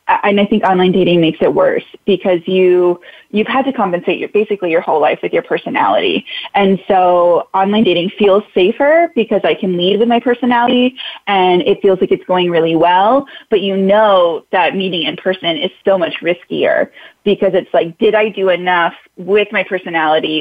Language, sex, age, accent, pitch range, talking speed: English, female, 20-39, American, 175-220 Hz, 190 wpm